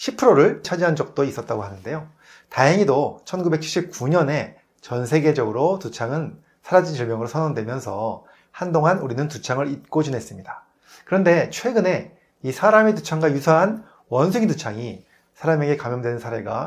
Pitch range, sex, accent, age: 125-175 Hz, male, native, 30-49